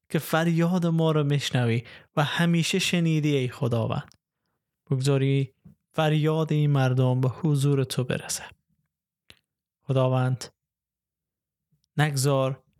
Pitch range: 125-150 Hz